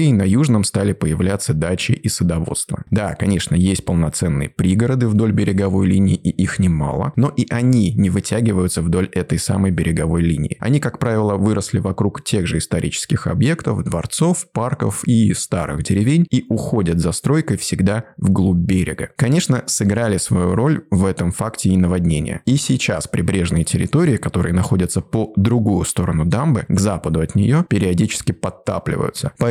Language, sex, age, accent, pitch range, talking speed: Russian, male, 20-39, native, 90-120 Hz, 155 wpm